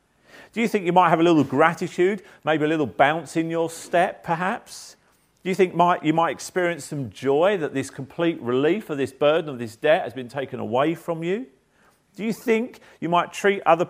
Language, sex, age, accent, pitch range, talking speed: English, male, 40-59, British, 130-185 Hz, 205 wpm